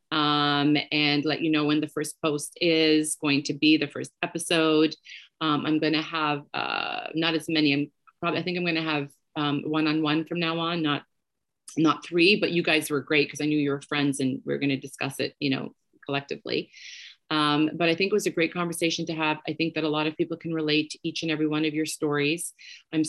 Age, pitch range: 30-49, 145-160 Hz